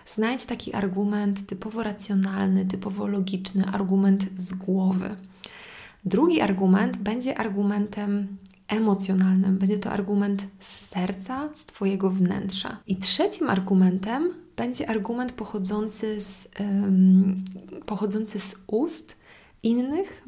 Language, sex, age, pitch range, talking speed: Polish, female, 20-39, 195-220 Hz, 100 wpm